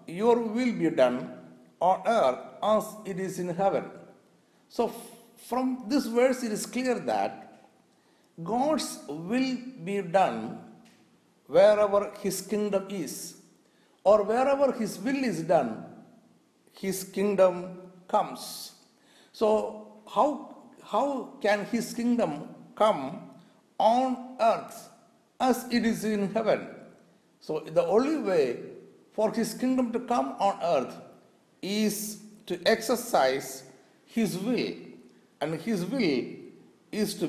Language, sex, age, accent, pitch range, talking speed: Malayalam, male, 60-79, native, 180-240 Hz, 115 wpm